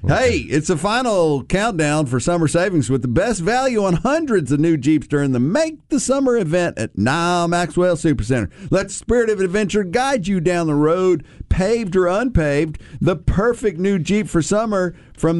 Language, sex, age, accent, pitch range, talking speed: English, male, 50-69, American, 150-200 Hz, 180 wpm